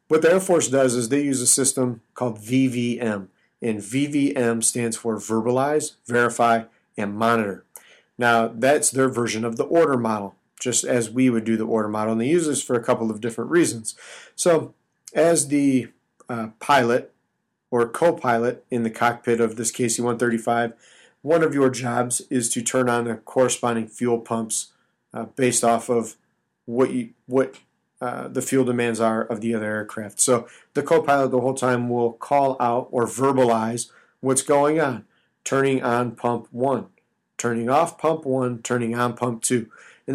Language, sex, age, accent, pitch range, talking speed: English, male, 40-59, American, 115-135 Hz, 170 wpm